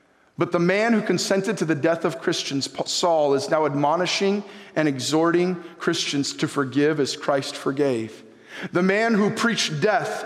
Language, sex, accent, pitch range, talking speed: English, male, American, 165-225 Hz, 160 wpm